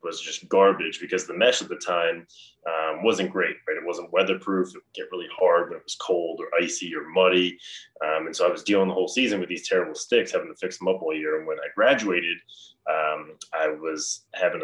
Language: English